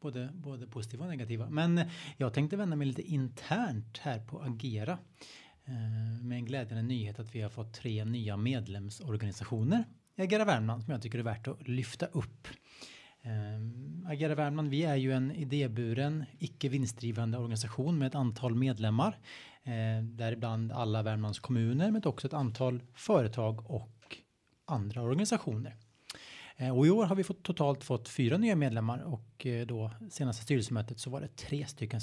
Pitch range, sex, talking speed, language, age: 115-145 Hz, male, 150 wpm, Swedish, 30-49